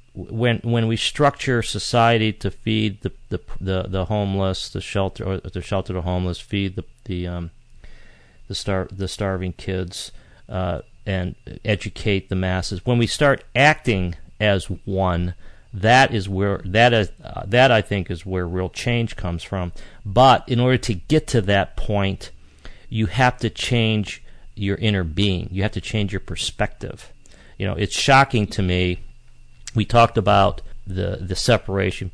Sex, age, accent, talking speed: male, 40-59, American, 160 wpm